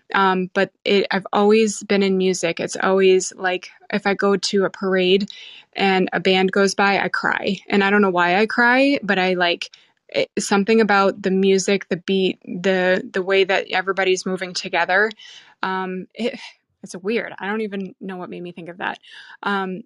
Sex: female